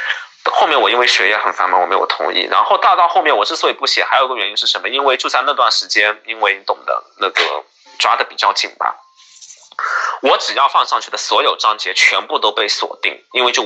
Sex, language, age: male, Chinese, 20-39